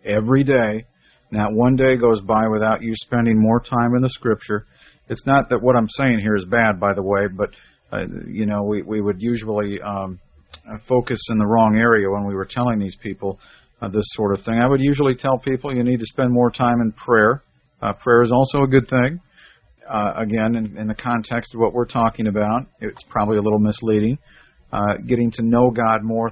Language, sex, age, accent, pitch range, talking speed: English, male, 50-69, American, 110-125 Hz, 215 wpm